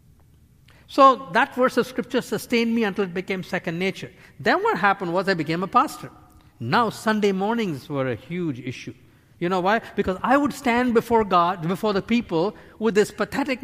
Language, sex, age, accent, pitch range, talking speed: English, male, 50-69, Indian, 155-220 Hz, 185 wpm